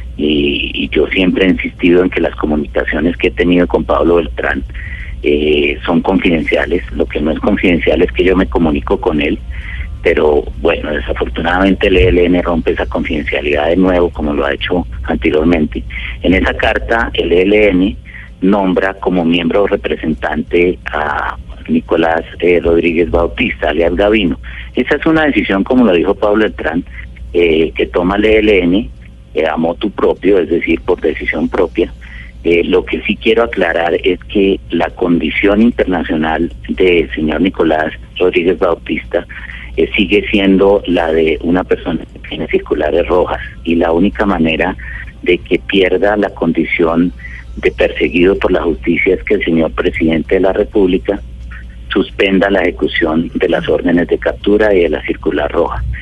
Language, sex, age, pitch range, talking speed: Spanish, male, 40-59, 70-95 Hz, 155 wpm